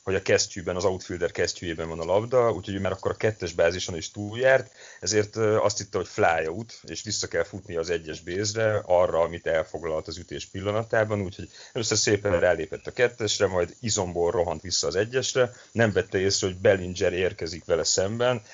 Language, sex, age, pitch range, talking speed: Hungarian, male, 30-49, 90-115 Hz, 190 wpm